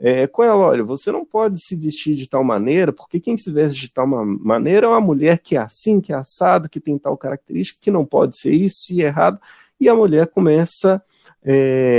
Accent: Brazilian